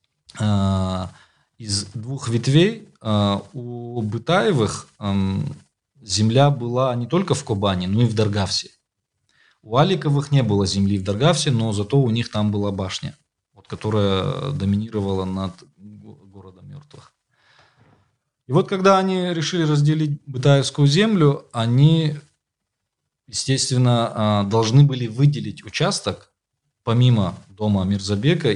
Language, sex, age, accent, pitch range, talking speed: Russian, male, 20-39, native, 105-145 Hz, 105 wpm